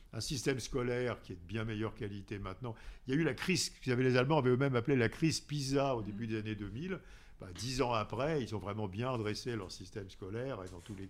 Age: 50-69